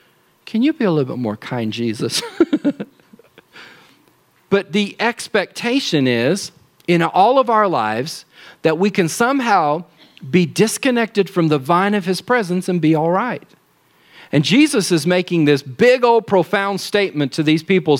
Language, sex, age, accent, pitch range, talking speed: English, male, 40-59, American, 145-195 Hz, 155 wpm